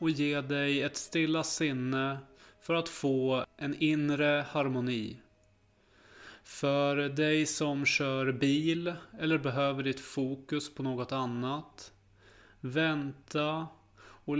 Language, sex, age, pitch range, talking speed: Swedish, male, 30-49, 100-145 Hz, 110 wpm